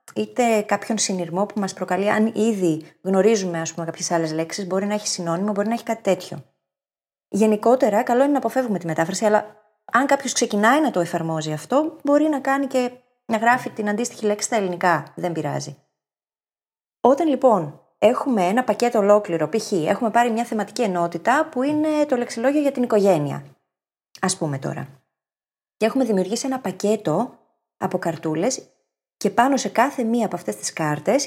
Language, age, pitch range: Greek, 20-39, 175-255 Hz